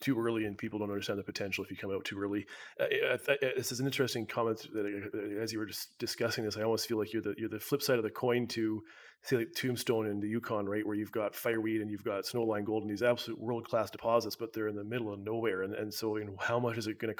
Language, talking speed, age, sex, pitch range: English, 290 wpm, 30-49, male, 110-120 Hz